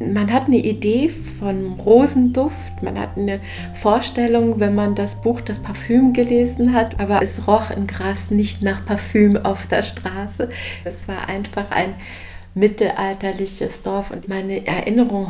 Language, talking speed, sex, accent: German, 150 wpm, female, German